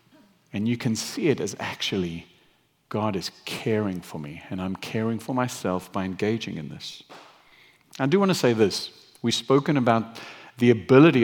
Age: 50-69